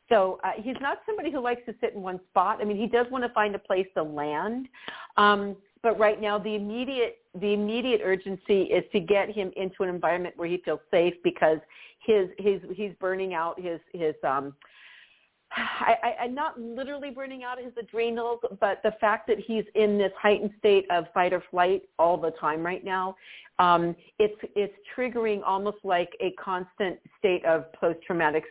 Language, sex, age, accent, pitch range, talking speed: English, female, 50-69, American, 170-210 Hz, 190 wpm